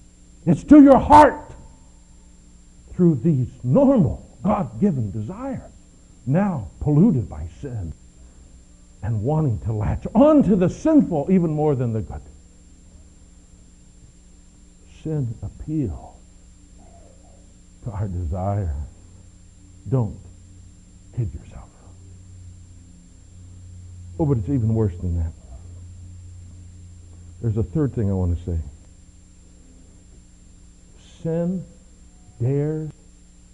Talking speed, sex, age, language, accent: 90 wpm, male, 60-79, English, American